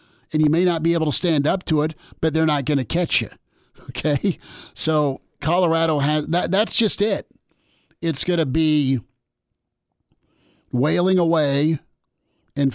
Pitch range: 130-160 Hz